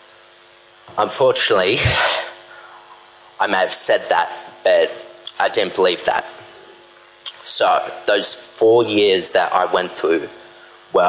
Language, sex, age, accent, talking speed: English, male, 30-49, Australian, 110 wpm